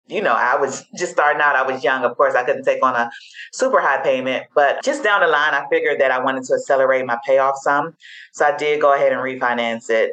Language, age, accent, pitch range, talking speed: English, 30-49, American, 130-185 Hz, 255 wpm